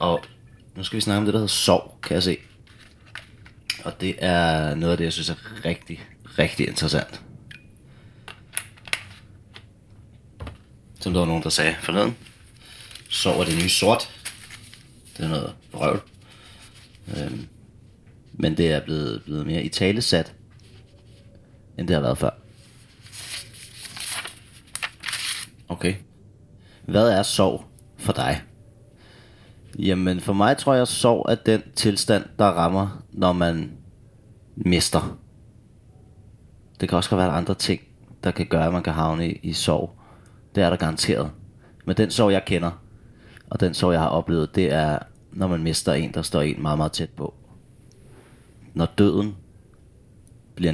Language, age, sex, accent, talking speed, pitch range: Danish, 30-49, male, native, 145 wpm, 85-115 Hz